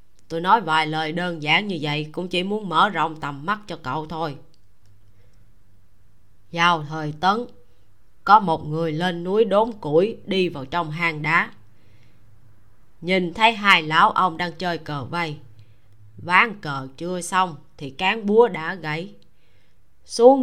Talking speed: 155 wpm